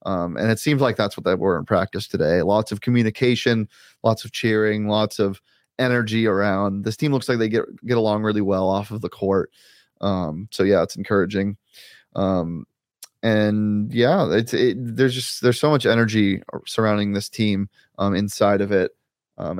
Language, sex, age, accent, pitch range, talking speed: English, male, 20-39, American, 100-120 Hz, 185 wpm